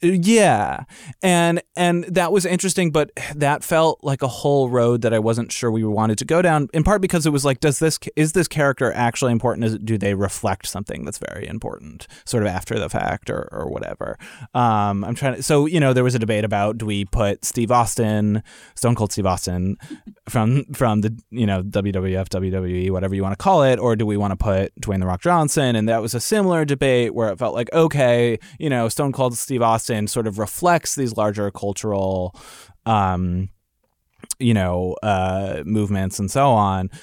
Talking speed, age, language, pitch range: 205 wpm, 20-39, English, 100-140 Hz